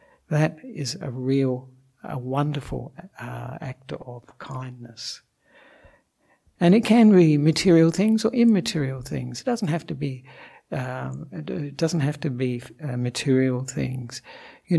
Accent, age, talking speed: British, 60-79, 140 wpm